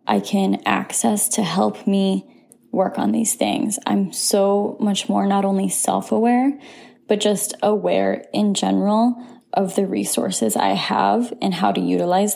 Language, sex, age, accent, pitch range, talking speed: English, female, 10-29, American, 190-225 Hz, 150 wpm